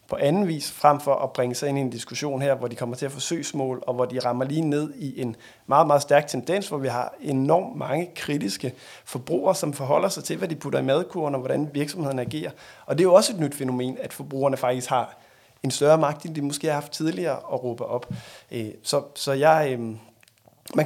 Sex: male